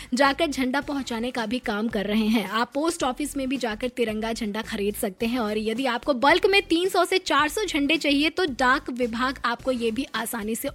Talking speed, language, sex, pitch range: 210 wpm, Hindi, female, 235-295 Hz